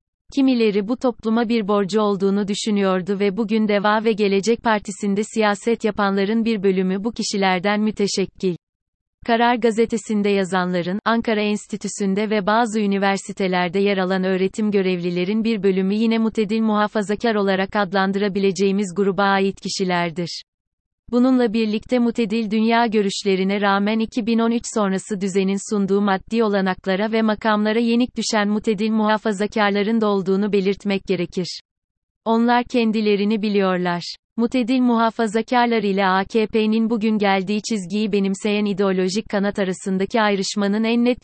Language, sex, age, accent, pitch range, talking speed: Turkish, female, 30-49, native, 195-225 Hz, 120 wpm